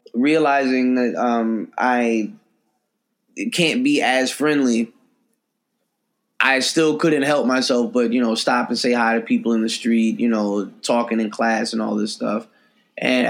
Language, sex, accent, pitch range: English, male, American, 115-150 Hz